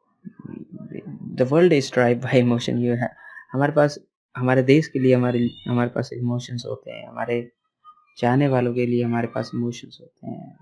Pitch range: 120-170 Hz